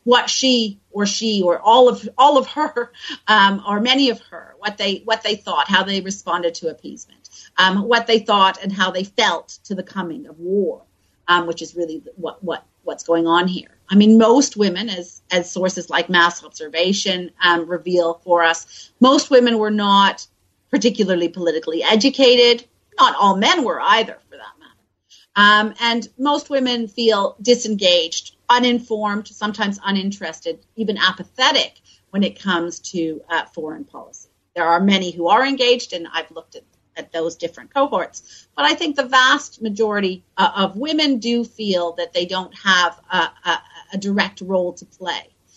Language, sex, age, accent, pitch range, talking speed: English, female, 40-59, American, 175-240 Hz, 170 wpm